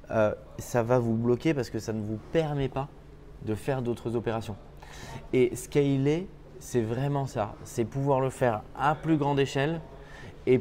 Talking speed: 170 wpm